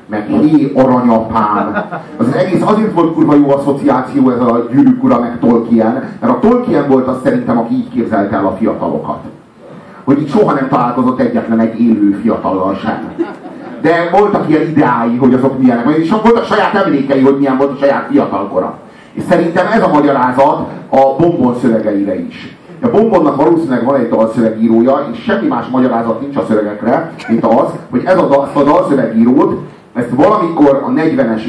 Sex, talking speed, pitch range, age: male, 165 wpm, 135-220 Hz, 30-49